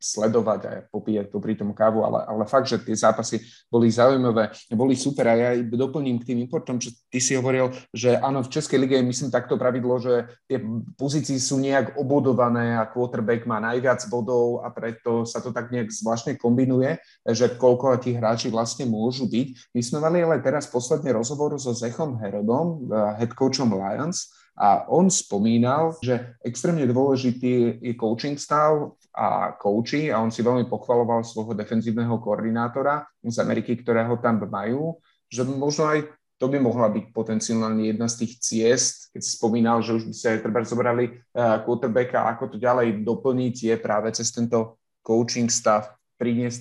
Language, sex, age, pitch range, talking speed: Slovak, male, 30-49, 115-130 Hz, 170 wpm